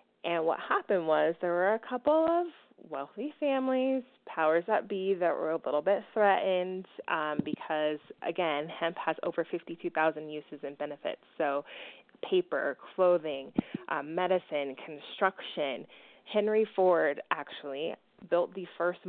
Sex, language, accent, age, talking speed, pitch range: female, English, American, 20-39, 130 wpm, 155-190 Hz